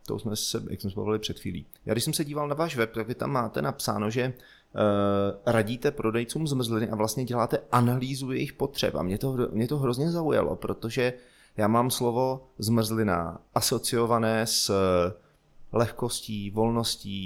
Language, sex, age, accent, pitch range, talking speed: Czech, male, 30-49, native, 100-120 Hz, 170 wpm